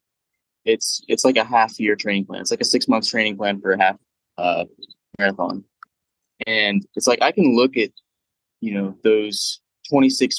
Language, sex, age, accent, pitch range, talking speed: English, male, 20-39, American, 100-125 Hz, 180 wpm